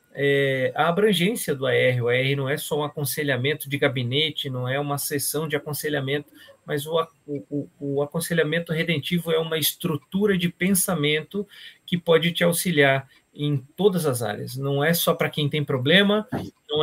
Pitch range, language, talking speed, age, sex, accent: 145-180 Hz, Portuguese, 160 wpm, 40-59, male, Brazilian